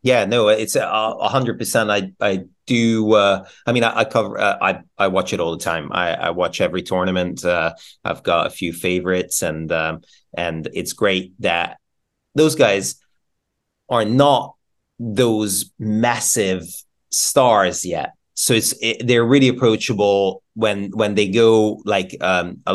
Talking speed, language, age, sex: 160 wpm, English, 30-49, male